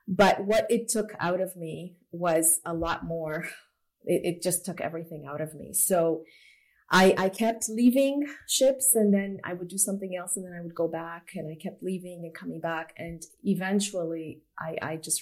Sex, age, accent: female, 30-49, Canadian